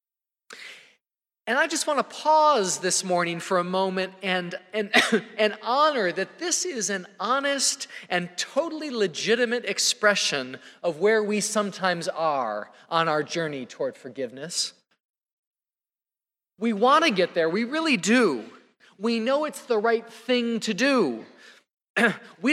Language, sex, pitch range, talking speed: English, male, 185-250 Hz, 135 wpm